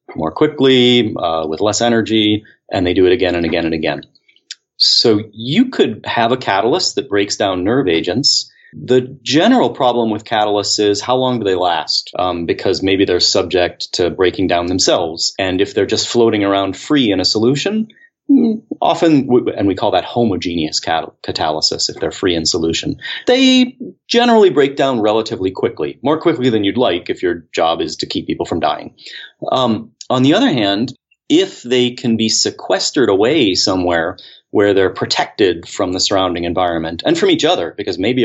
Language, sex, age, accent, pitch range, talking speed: English, male, 30-49, American, 95-135 Hz, 175 wpm